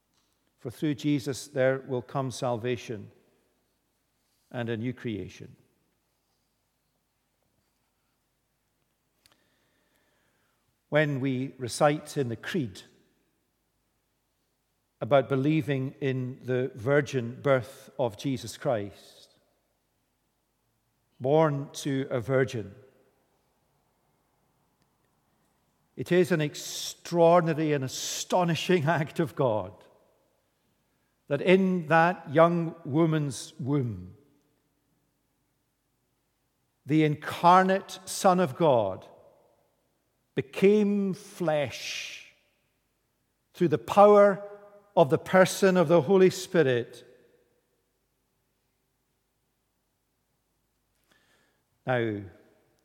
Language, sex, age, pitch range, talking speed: English, male, 50-69, 120-160 Hz, 70 wpm